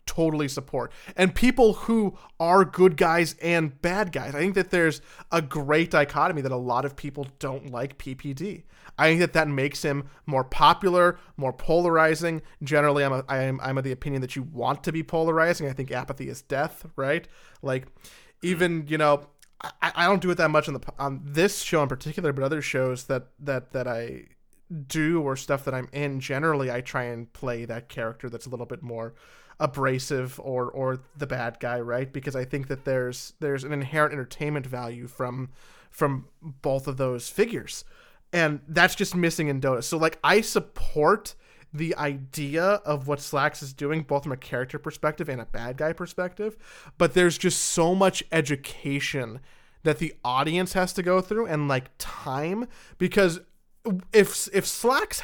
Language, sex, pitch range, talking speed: English, male, 135-170 Hz, 185 wpm